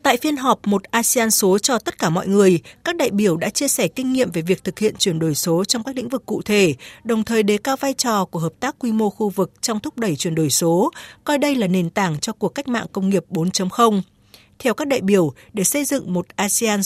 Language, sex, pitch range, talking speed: Vietnamese, female, 180-240 Hz, 255 wpm